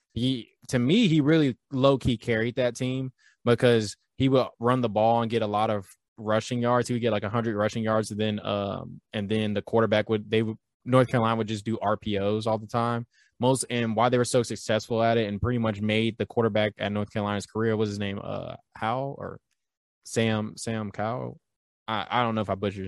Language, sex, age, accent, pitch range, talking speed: English, male, 20-39, American, 105-125 Hz, 225 wpm